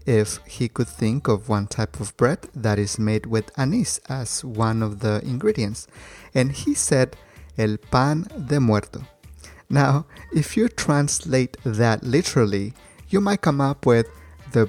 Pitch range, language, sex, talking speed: 110-140 Hz, English, male, 155 wpm